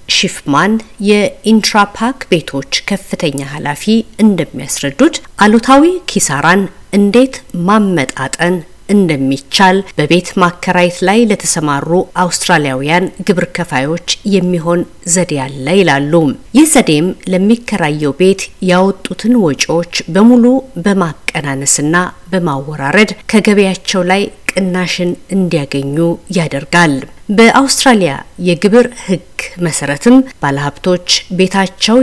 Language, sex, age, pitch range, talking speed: Amharic, female, 50-69, 155-205 Hz, 80 wpm